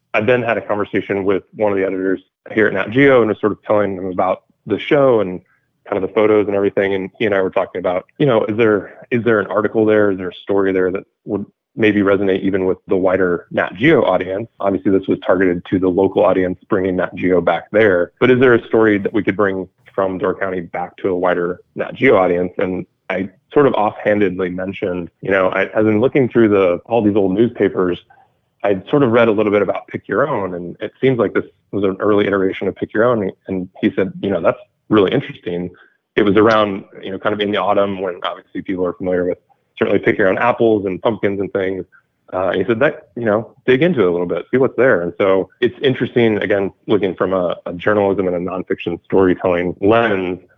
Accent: American